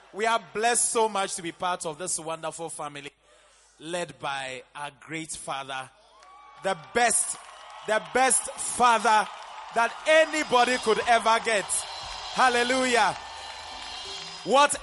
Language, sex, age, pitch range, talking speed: English, male, 20-39, 145-215 Hz, 115 wpm